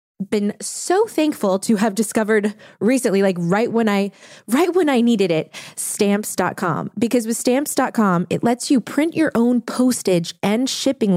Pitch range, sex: 175-225 Hz, female